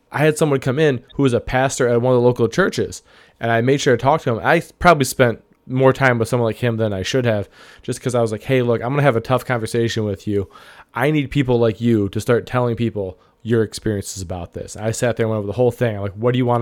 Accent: American